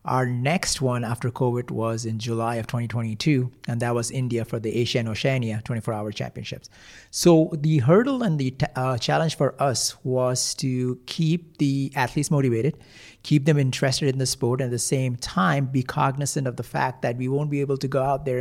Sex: male